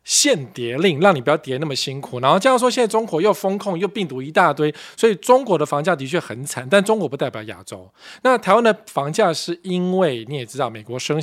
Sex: male